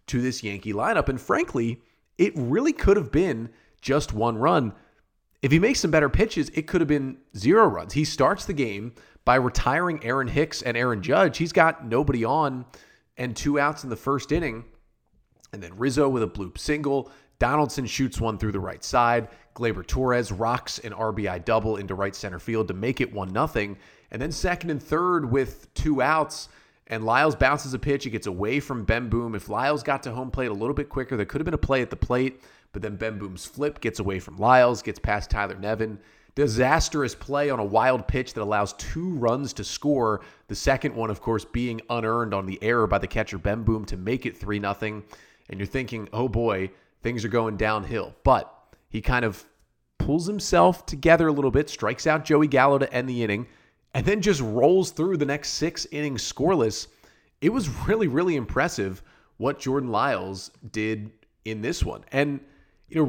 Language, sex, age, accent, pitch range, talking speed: English, male, 30-49, American, 110-145 Hz, 200 wpm